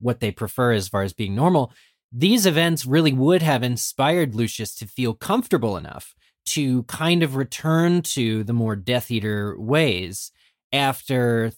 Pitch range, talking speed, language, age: 105-145 Hz, 155 wpm, English, 30-49